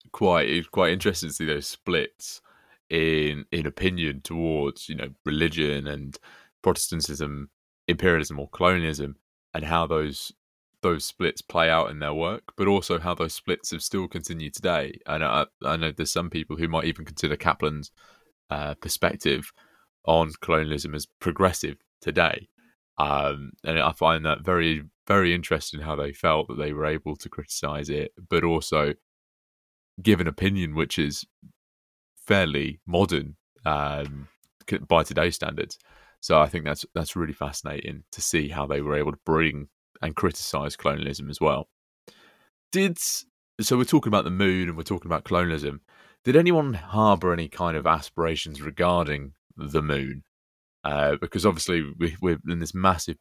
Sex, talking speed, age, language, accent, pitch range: male, 155 wpm, 20-39, English, British, 75-85 Hz